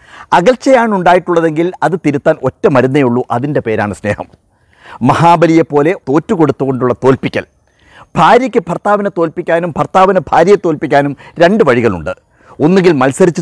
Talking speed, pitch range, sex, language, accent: 105 wpm, 130-185 Hz, male, Malayalam, native